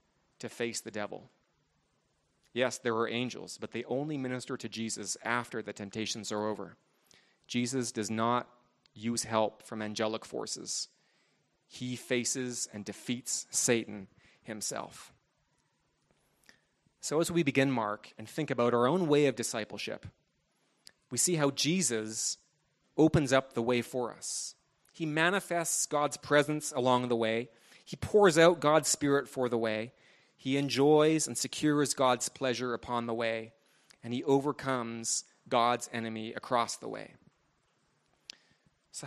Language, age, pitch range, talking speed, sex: English, 30-49, 115-145 Hz, 135 wpm, male